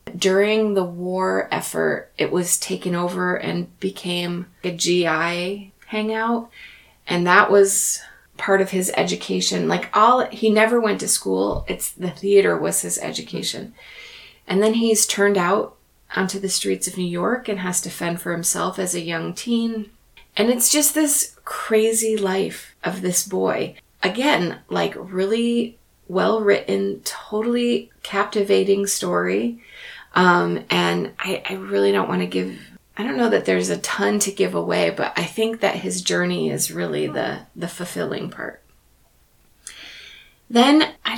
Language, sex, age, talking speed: English, female, 30-49, 150 wpm